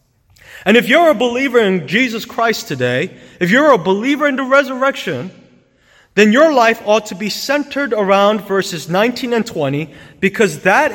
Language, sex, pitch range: English, male, 150-230 Hz